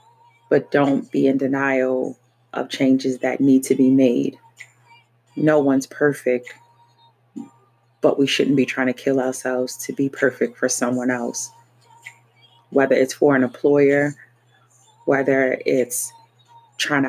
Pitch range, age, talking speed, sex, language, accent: 125-140 Hz, 30-49, 130 wpm, female, English, American